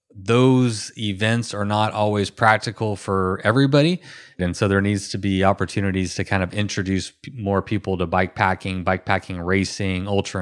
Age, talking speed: 20-39, 150 wpm